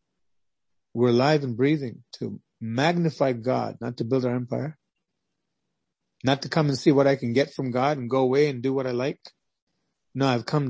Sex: male